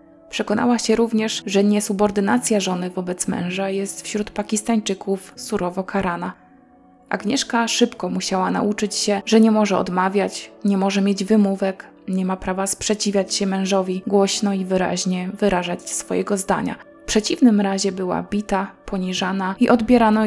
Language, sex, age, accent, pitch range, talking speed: Polish, female, 20-39, native, 190-220 Hz, 135 wpm